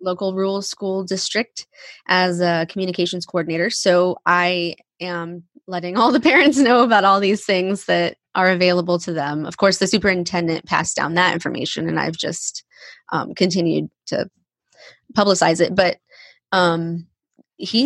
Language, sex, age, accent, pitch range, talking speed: English, female, 20-39, American, 170-205 Hz, 150 wpm